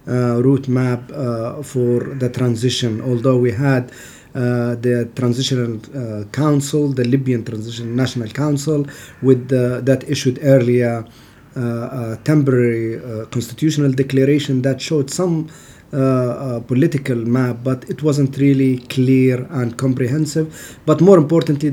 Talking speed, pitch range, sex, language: 130 wpm, 125-135 Hz, male, English